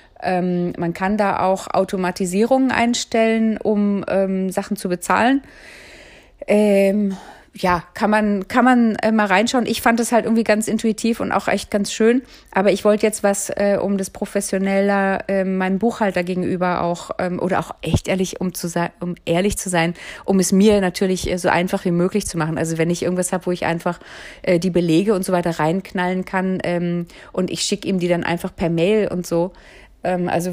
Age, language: 30-49, German